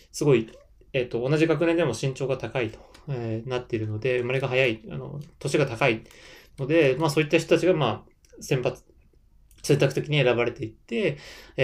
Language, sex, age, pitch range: Japanese, male, 20-39, 115-160 Hz